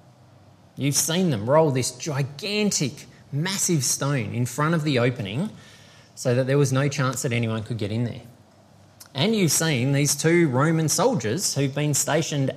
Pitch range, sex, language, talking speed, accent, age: 110-145 Hz, male, English, 165 wpm, Australian, 20-39